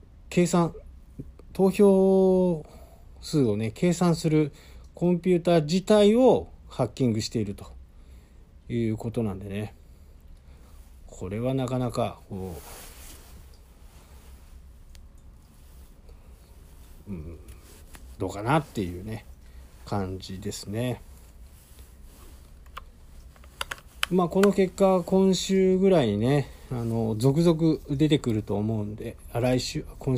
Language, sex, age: Japanese, male, 50-69